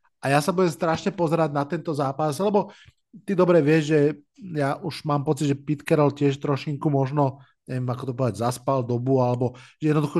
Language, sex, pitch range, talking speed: Slovak, male, 130-160 Hz, 190 wpm